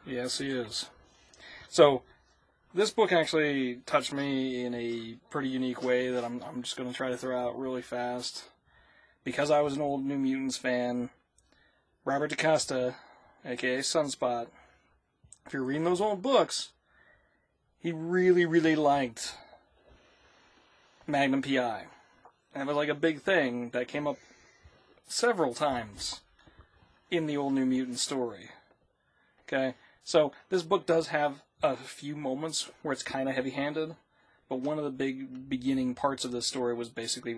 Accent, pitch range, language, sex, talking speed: American, 120-145 Hz, English, male, 150 wpm